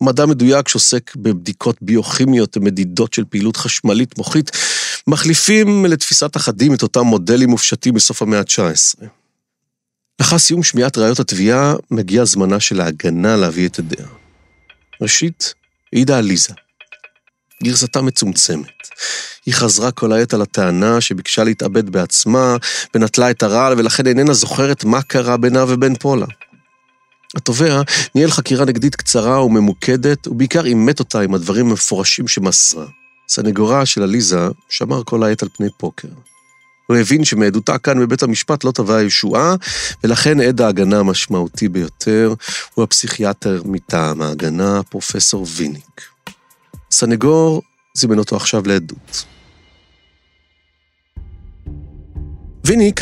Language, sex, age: Hebrew, male, 40-59